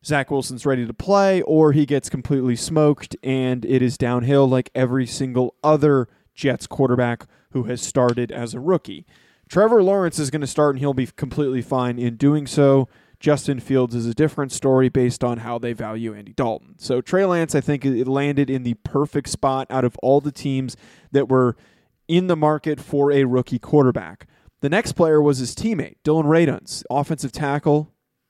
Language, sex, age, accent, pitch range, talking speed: English, male, 20-39, American, 130-150 Hz, 185 wpm